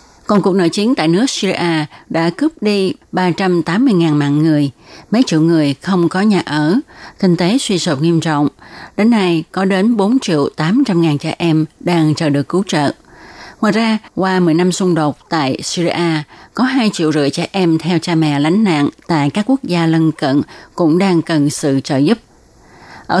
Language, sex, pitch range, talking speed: Vietnamese, female, 155-205 Hz, 180 wpm